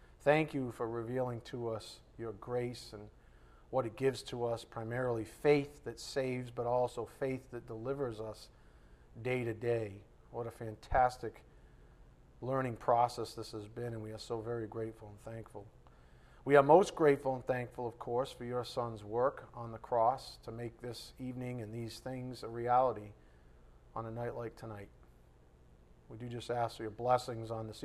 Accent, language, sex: American, English, male